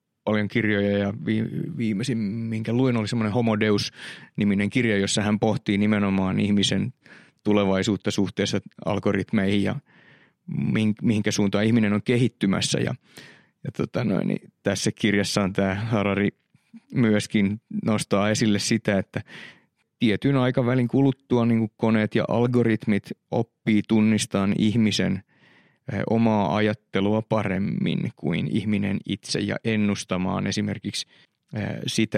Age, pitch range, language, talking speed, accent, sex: 30-49, 100-120 Hz, Finnish, 110 wpm, native, male